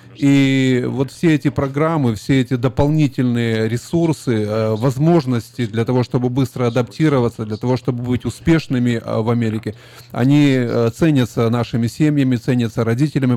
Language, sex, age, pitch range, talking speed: Russian, male, 30-49, 120-145 Hz, 125 wpm